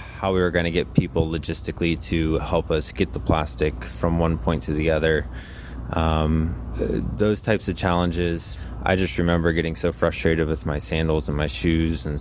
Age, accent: 20-39, American